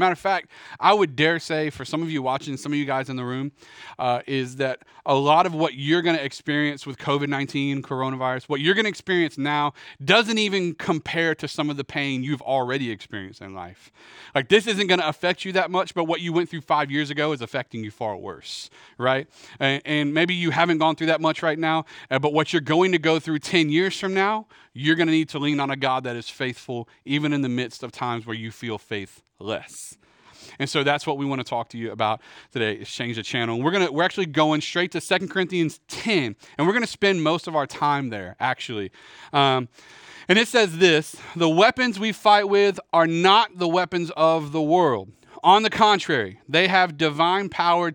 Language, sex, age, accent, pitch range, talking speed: English, male, 30-49, American, 140-185 Hz, 230 wpm